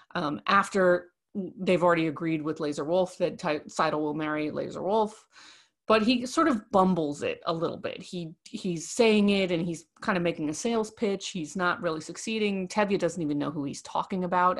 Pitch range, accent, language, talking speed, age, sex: 155-195 Hz, American, English, 195 wpm, 30-49, female